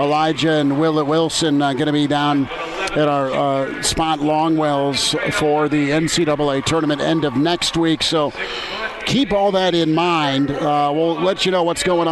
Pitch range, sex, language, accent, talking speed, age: 150-170 Hz, male, English, American, 175 wpm, 50-69